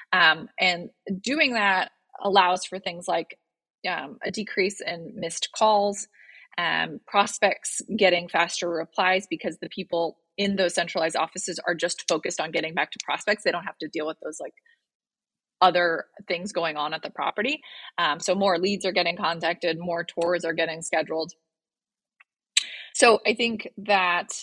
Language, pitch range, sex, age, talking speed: English, 165-210 Hz, female, 20-39, 160 wpm